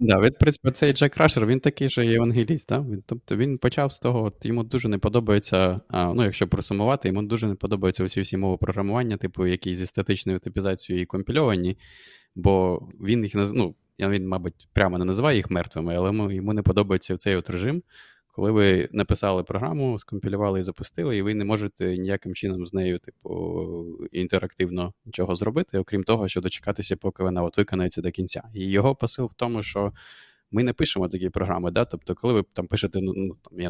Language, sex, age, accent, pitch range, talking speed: Ukrainian, male, 20-39, native, 90-105 Hz, 185 wpm